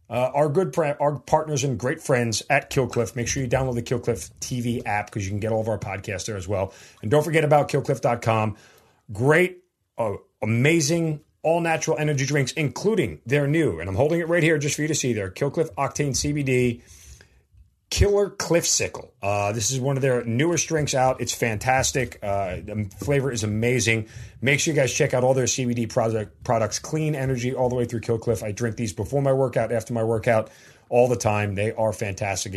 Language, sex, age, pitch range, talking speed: English, male, 40-59, 110-140 Hz, 205 wpm